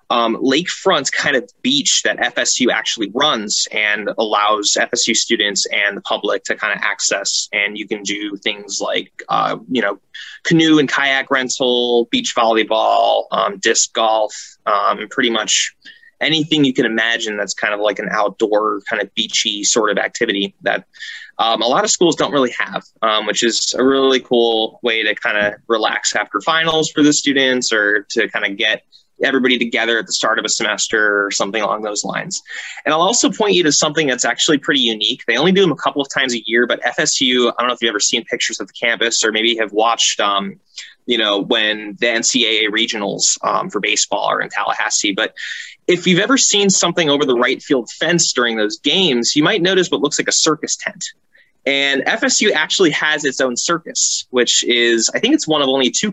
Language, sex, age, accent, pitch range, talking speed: English, male, 20-39, American, 110-155 Hz, 205 wpm